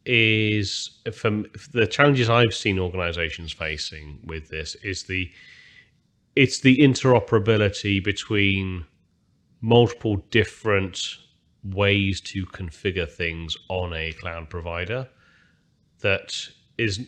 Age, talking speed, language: 30-49, 100 wpm, English